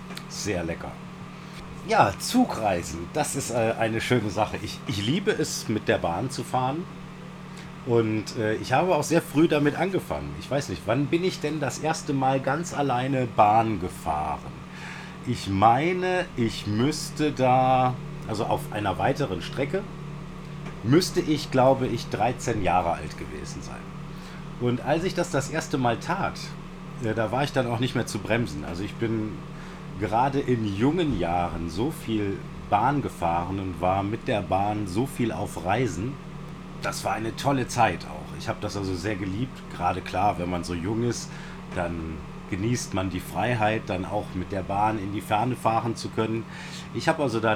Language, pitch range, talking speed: German, 105-160 Hz, 170 wpm